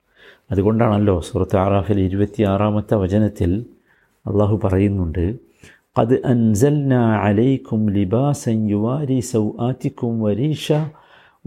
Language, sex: Malayalam, male